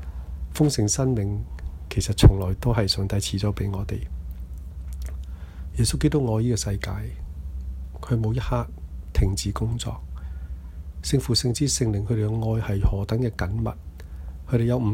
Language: Chinese